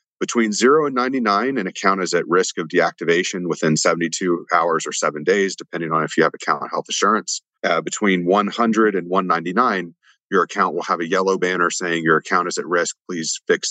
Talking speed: 195 wpm